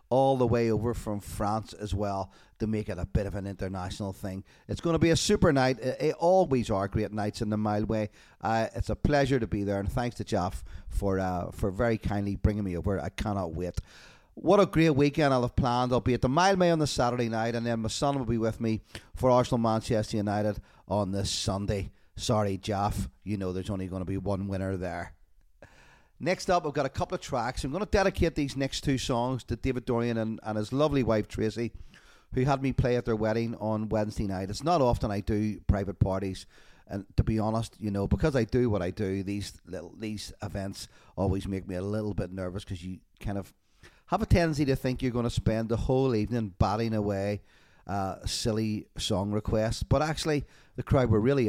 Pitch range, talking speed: 100-125 Hz, 225 wpm